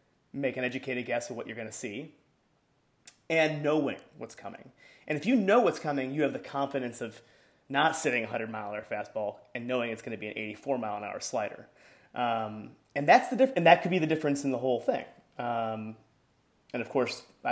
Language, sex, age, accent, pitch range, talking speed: English, male, 30-49, American, 120-155 Hz, 225 wpm